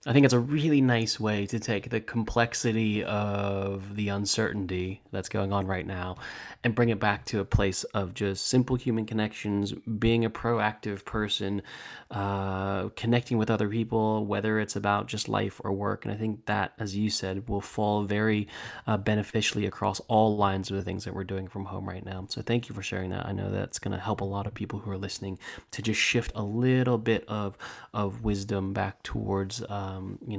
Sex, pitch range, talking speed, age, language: male, 100-115 Hz, 205 wpm, 20-39, English